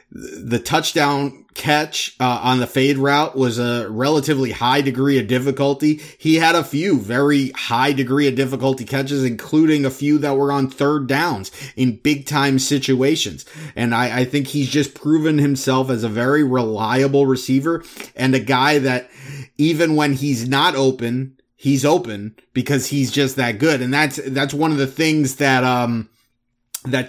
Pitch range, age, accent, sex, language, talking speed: 130-150 Hz, 30-49, American, male, English, 170 wpm